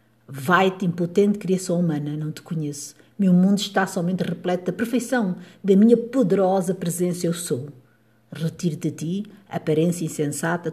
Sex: female